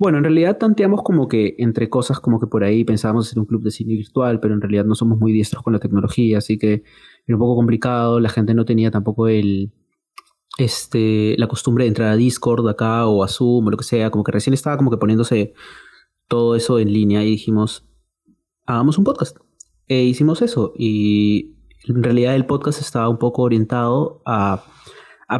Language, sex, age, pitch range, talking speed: Spanish, male, 30-49, 110-130 Hz, 205 wpm